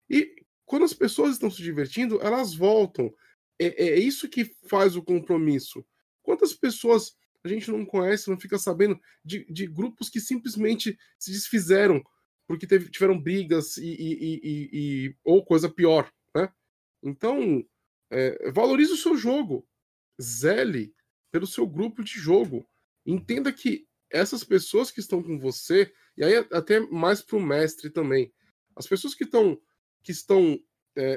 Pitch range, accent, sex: 185-255 Hz, Brazilian, male